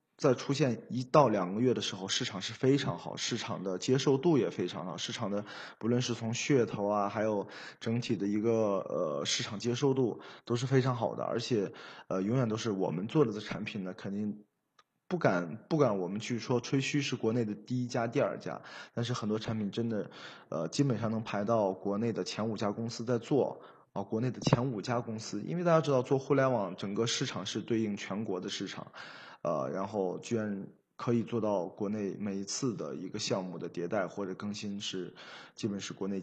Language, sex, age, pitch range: Chinese, male, 20-39, 100-125 Hz